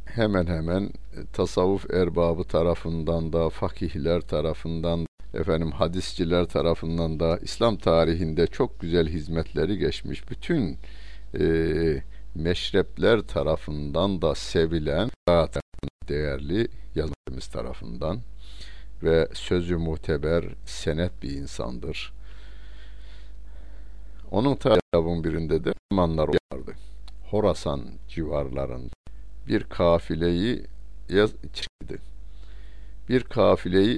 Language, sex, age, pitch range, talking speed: Turkish, male, 60-79, 80-100 Hz, 80 wpm